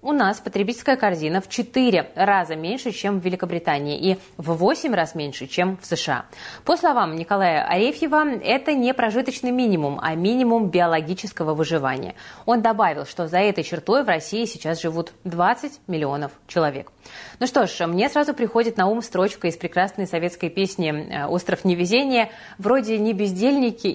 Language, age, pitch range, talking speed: Russian, 20-39, 170-235 Hz, 155 wpm